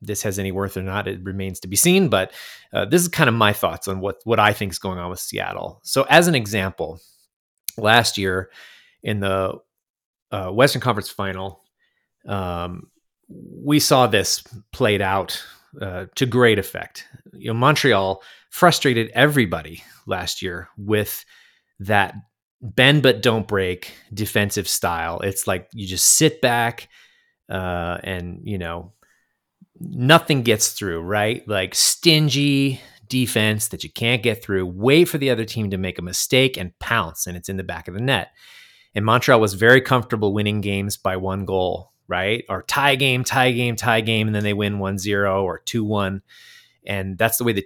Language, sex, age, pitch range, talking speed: English, male, 30-49, 95-125 Hz, 175 wpm